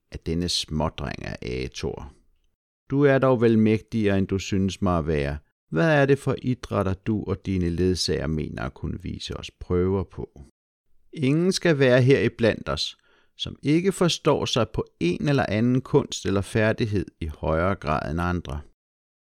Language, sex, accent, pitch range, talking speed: Danish, male, native, 80-130 Hz, 170 wpm